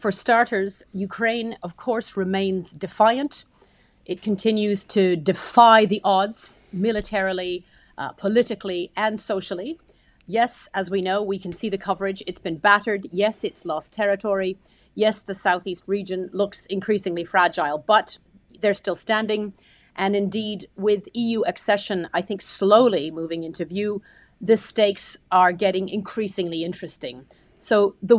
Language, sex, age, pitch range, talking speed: French, female, 30-49, 185-220 Hz, 135 wpm